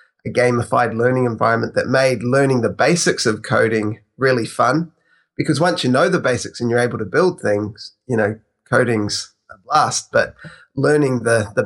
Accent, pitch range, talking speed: Australian, 115-140 Hz, 175 wpm